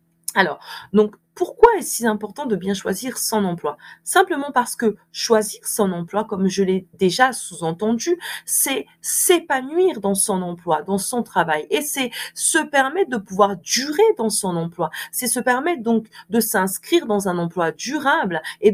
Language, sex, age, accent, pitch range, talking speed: French, female, 30-49, French, 190-270 Hz, 165 wpm